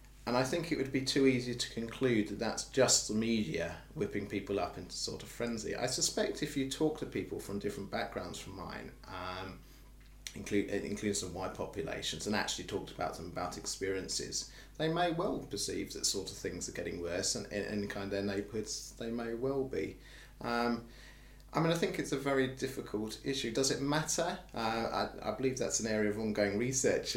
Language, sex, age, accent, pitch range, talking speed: English, male, 30-49, British, 100-130 Hz, 205 wpm